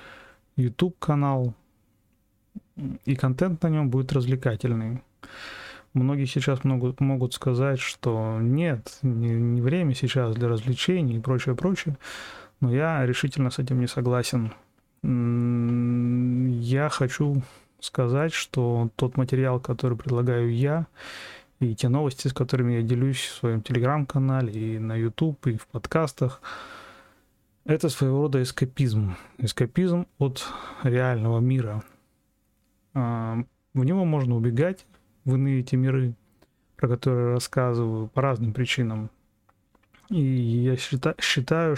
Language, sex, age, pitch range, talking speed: Russian, male, 20-39, 120-135 Hz, 115 wpm